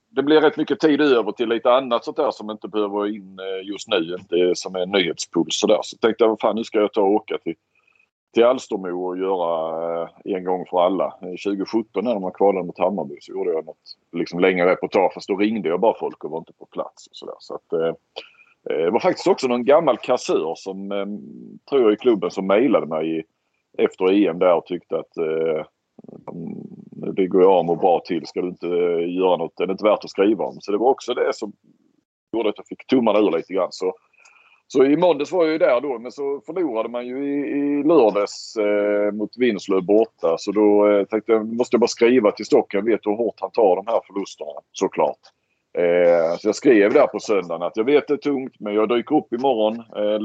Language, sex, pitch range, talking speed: Swedish, male, 95-140 Hz, 230 wpm